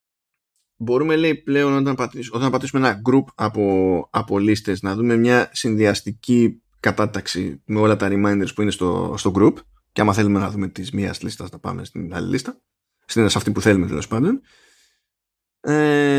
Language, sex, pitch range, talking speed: Greek, male, 105-150 Hz, 165 wpm